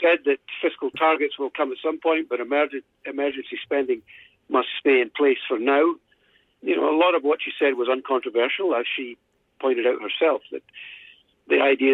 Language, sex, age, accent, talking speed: English, male, 50-69, British, 180 wpm